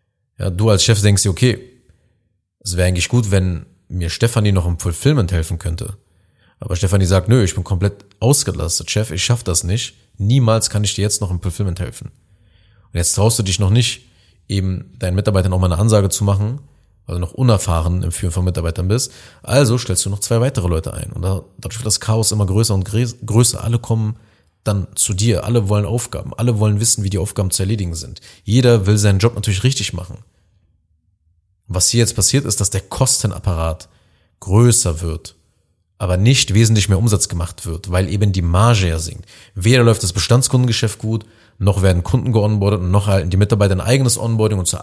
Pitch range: 95-115 Hz